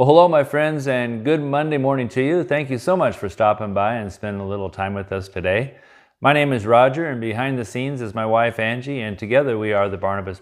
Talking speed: 250 wpm